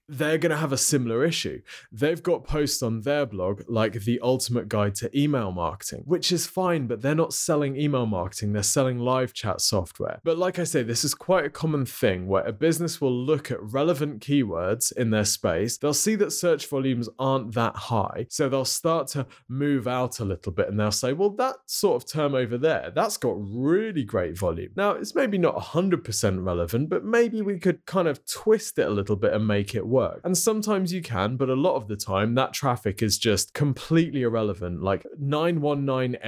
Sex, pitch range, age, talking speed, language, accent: male, 110-150 Hz, 20-39, 210 wpm, English, British